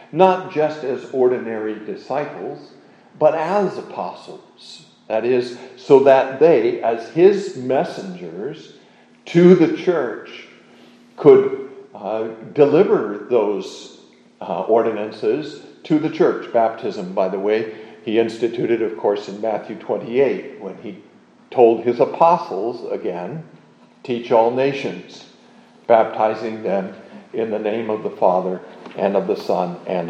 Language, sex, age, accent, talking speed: English, male, 50-69, American, 120 wpm